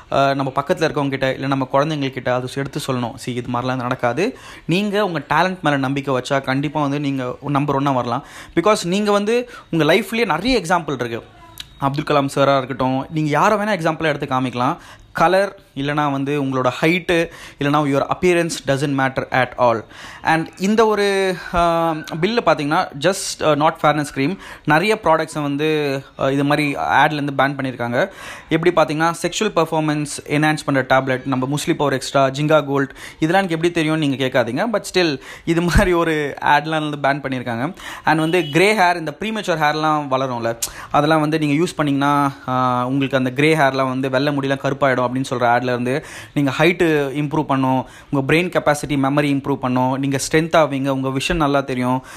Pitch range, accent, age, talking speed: 135-165 Hz, native, 20-39, 145 wpm